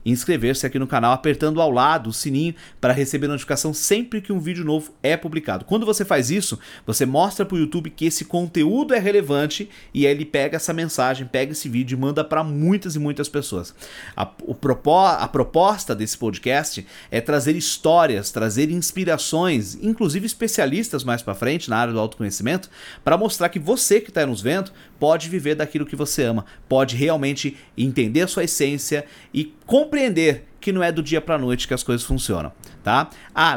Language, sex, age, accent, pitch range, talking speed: Portuguese, male, 40-59, Brazilian, 130-170 Hz, 185 wpm